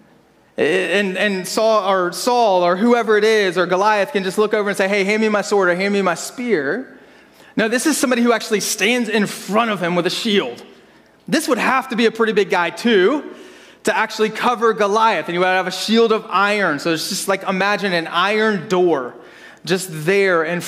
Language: English